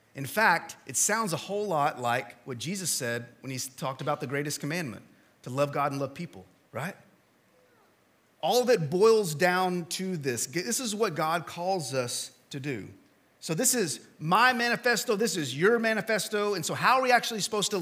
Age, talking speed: 30-49, 190 wpm